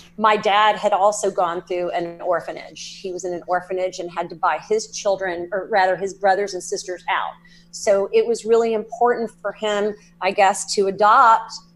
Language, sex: English, female